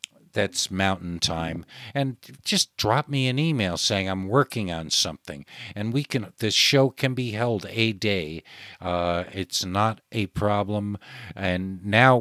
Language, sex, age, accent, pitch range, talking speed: English, male, 50-69, American, 95-135 Hz, 150 wpm